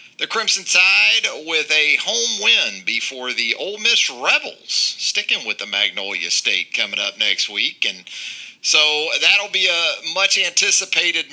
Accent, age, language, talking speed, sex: American, 40-59, English, 145 wpm, male